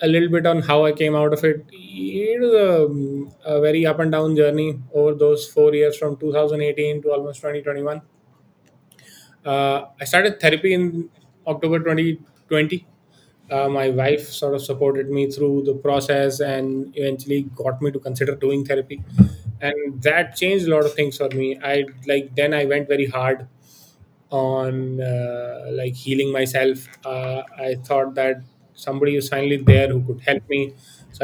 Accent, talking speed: Indian, 165 wpm